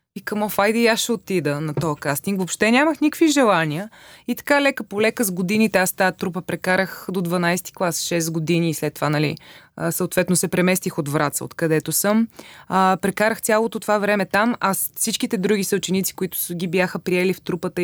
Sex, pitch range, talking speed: female, 170-210 Hz, 190 wpm